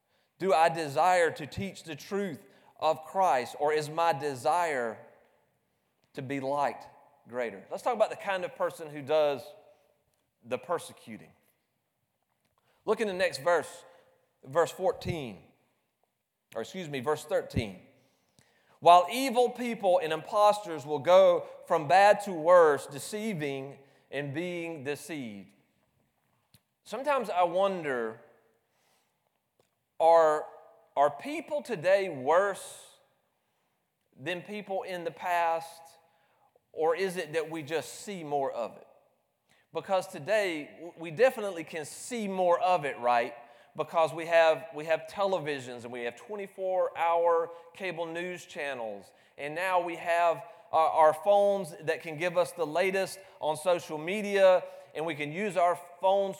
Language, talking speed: English, 130 wpm